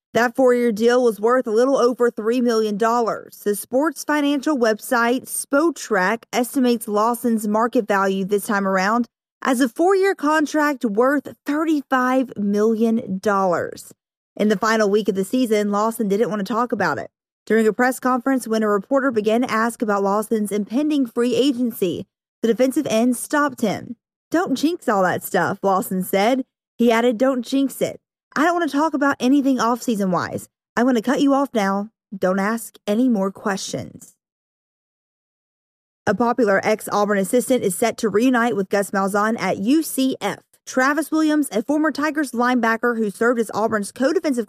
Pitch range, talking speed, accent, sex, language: 215-265 Hz, 160 wpm, American, female, English